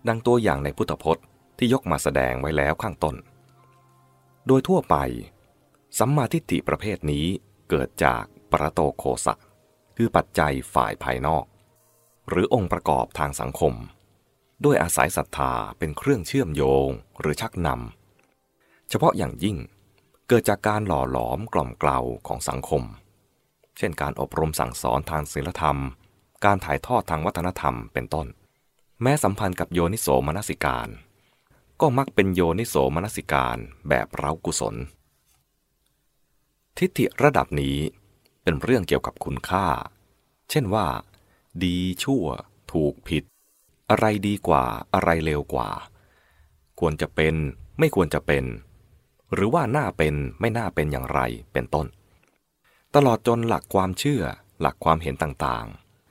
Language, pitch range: English, 70-110 Hz